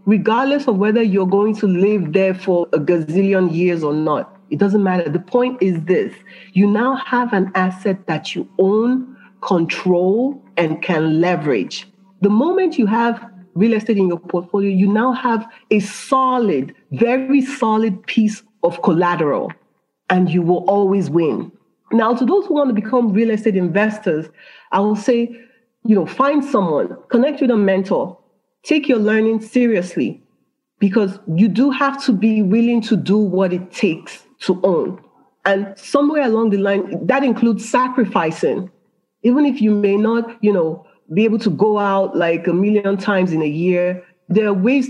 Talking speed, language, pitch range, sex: 170 wpm, English, 180-230 Hz, female